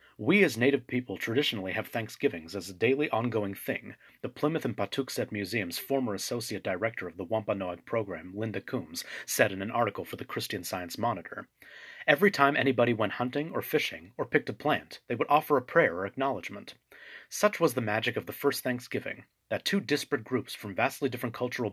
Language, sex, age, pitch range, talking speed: English, male, 30-49, 110-145 Hz, 190 wpm